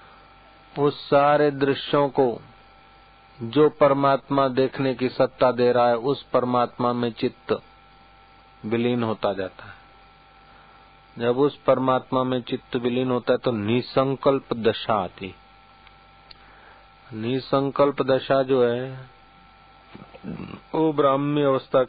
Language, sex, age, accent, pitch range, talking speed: Hindi, male, 50-69, native, 110-130 Hz, 105 wpm